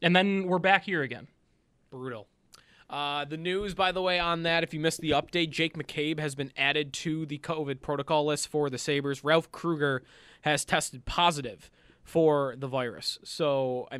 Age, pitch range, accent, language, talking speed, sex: 20-39, 135-170 Hz, American, English, 185 wpm, male